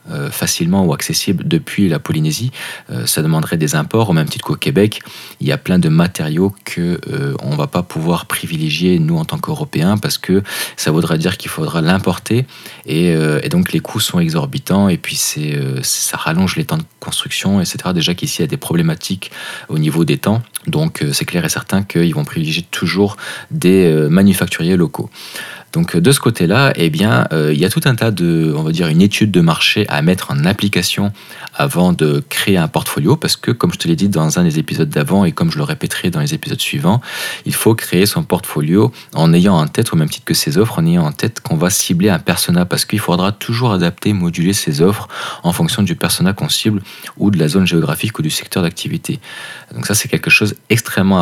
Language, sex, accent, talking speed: French, male, French, 220 wpm